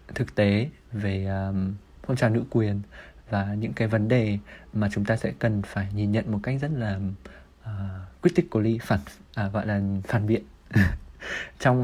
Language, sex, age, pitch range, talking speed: Vietnamese, male, 20-39, 100-125 Hz, 175 wpm